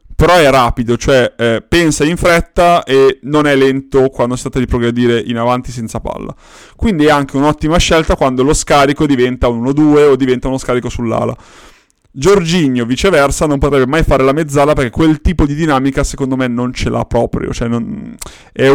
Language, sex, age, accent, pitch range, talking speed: Italian, male, 30-49, native, 115-140 Hz, 185 wpm